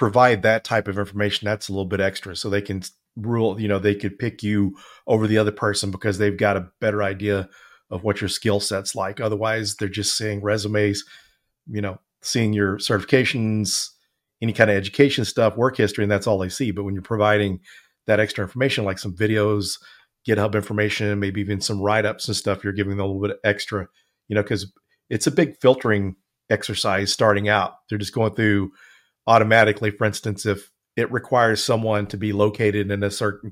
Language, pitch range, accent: English, 100-110 Hz, American